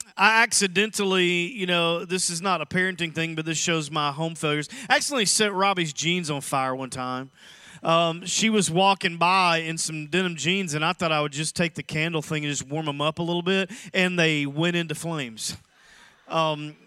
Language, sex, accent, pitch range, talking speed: English, male, American, 160-195 Hz, 205 wpm